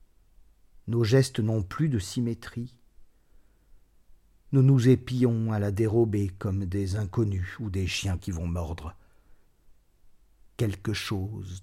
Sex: male